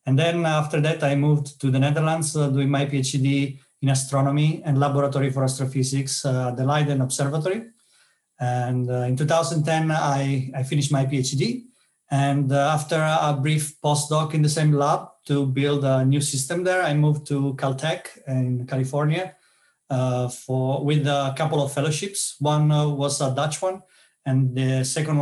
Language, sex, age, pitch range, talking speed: English, male, 30-49, 135-150 Hz, 165 wpm